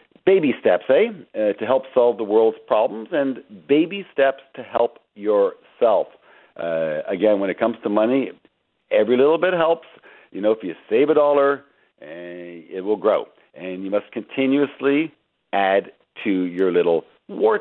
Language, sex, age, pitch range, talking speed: English, male, 50-69, 100-150 Hz, 160 wpm